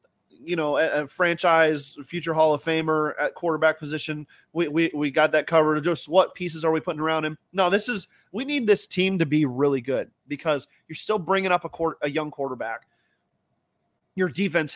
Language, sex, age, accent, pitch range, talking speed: English, male, 30-49, American, 145-180 Hz, 195 wpm